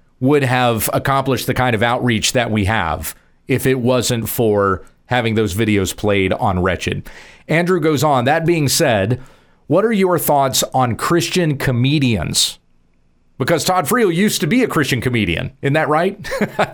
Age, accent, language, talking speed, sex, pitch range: 40-59, American, English, 165 wpm, male, 120-160 Hz